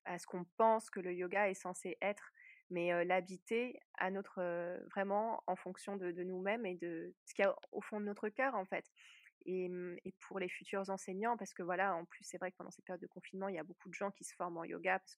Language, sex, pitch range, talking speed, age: French, female, 180-220 Hz, 260 wpm, 20-39